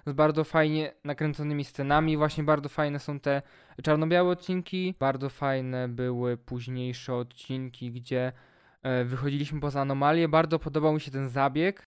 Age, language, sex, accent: 20-39, Polish, male, native